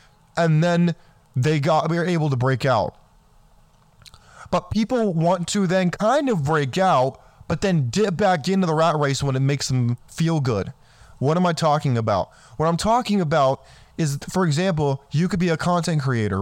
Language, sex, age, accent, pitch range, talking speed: English, male, 20-39, American, 140-180 Hz, 185 wpm